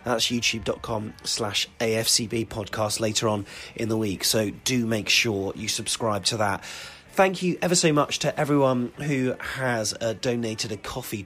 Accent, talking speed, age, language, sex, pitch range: British, 165 wpm, 30-49, English, male, 100-130 Hz